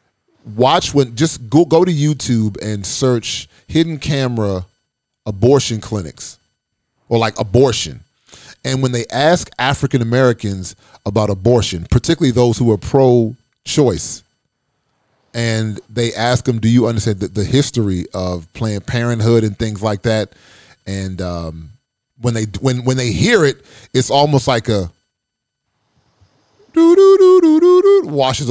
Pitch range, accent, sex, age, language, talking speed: 105-135 Hz, American, male, 30-49, English, 130 wpm